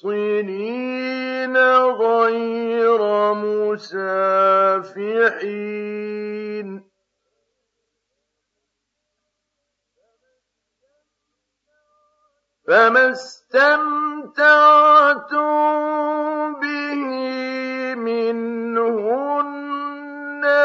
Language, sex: Arabic, male